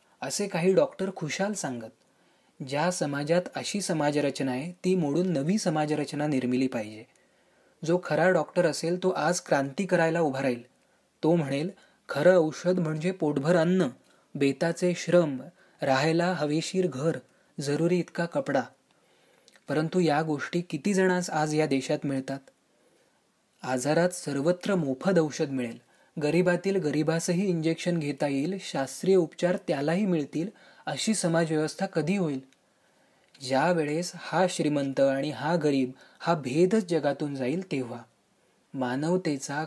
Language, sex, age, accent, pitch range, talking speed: Marathi, male, 30-49, native, 140-180 Hz, 120 wpm